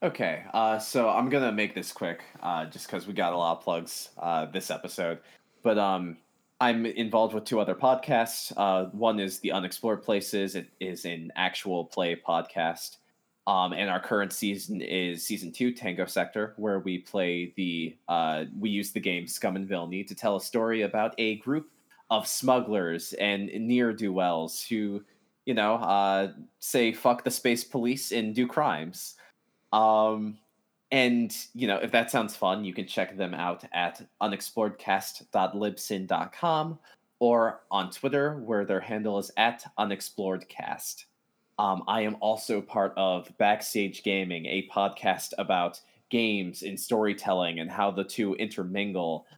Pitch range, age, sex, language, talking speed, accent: 95-115 Hz, 20-39, male, English, 155 wpm, American